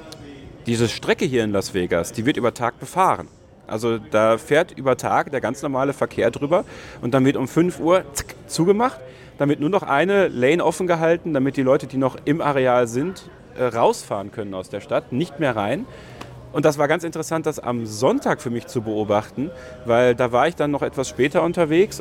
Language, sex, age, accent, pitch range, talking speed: German, male, 40-59, German, 115-155 Hz, 200 wpm